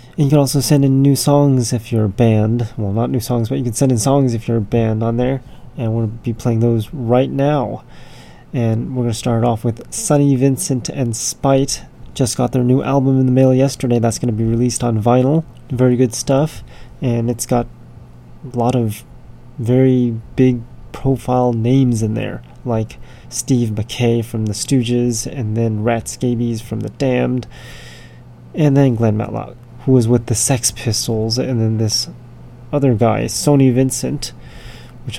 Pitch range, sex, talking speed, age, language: 115-130 Hz, male, 185 wpm, 20-39, English